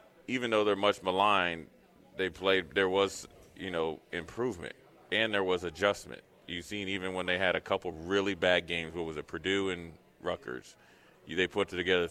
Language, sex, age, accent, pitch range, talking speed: English, male, 30-49, American, 85-105 Hz, 185 wpm